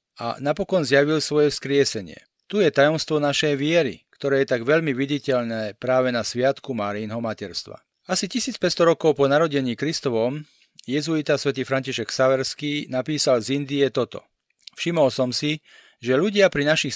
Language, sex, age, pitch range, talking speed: Slovak, male, 40-59, 130-155 Hz, 145 wpm